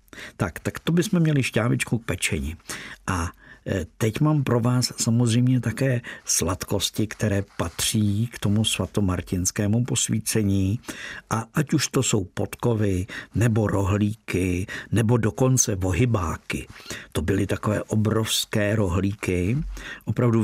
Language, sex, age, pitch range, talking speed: Czech, male, 50-69, 95-115 Hz, 115 wpm